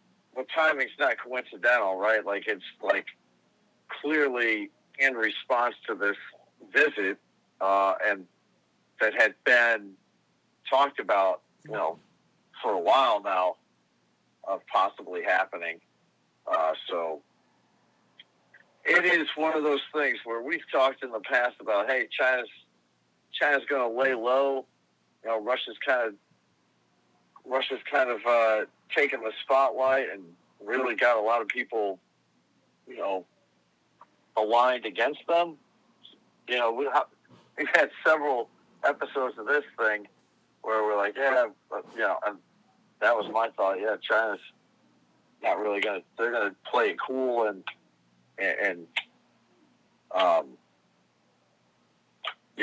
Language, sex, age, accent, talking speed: English, male, 50-69, American, 125 wpm